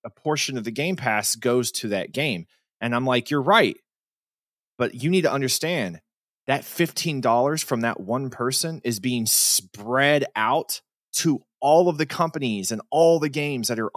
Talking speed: 180 wpm